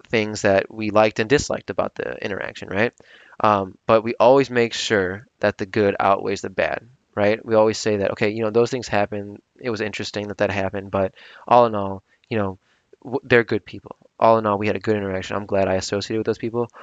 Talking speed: 225 wpm